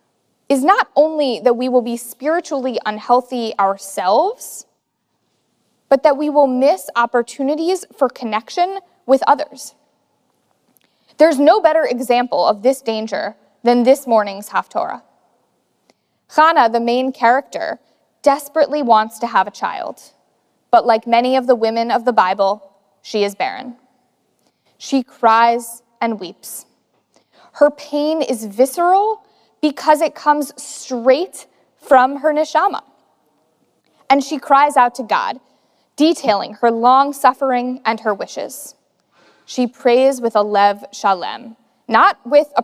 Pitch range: 230-295 Hz